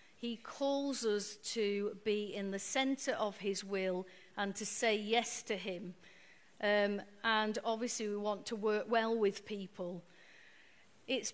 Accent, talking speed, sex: British, 150 wpm, female